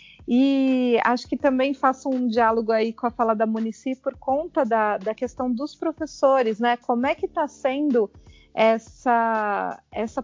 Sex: female